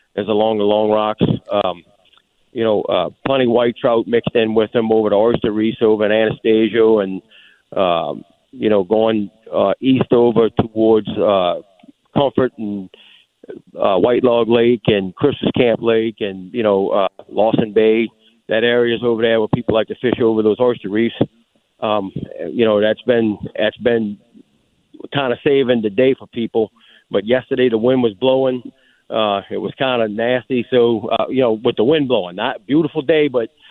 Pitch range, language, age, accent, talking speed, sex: 110-130 Hz, English, 50-69, American, 180 wpm, male